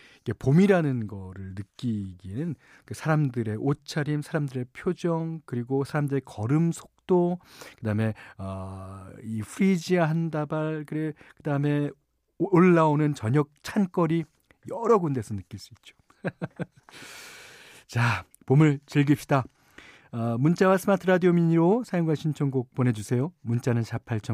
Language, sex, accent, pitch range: Korean, male, native, 110-160 Hz